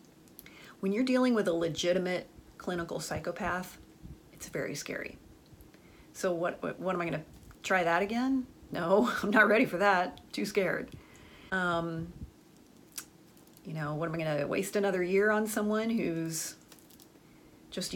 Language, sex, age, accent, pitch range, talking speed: English, female, 40-59, American, 170-210 Hz, 150 wpm